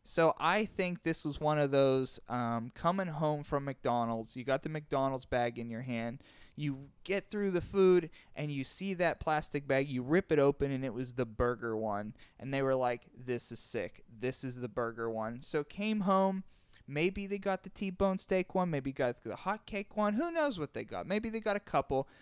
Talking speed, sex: 215 wpm, male